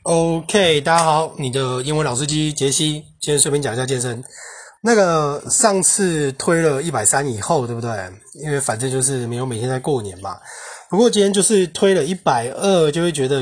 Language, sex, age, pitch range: Chinese, male, 20-39, 125-160 Hz